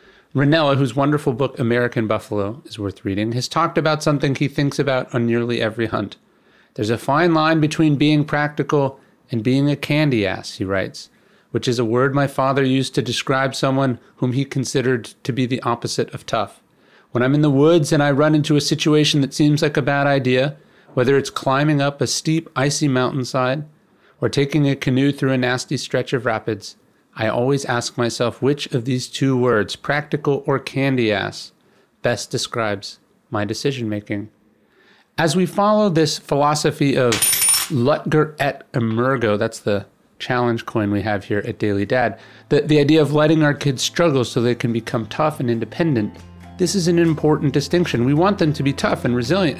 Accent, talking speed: American, 185 wpm